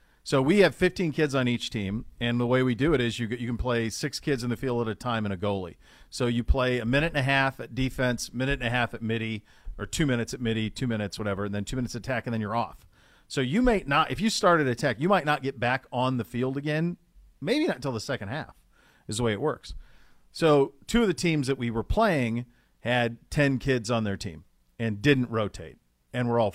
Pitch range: 115-150 Hz